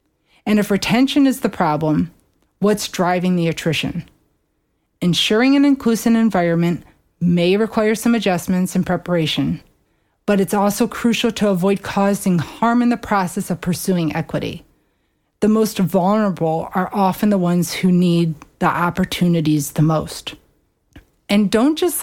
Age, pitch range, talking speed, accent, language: 30-49, 170-210 Hz, 135 wpm, American, English